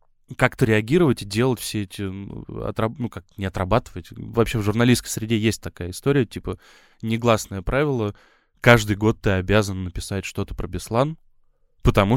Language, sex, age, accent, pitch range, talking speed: Russian, male, 10-29, native, 95-115 Hz, 155 wpm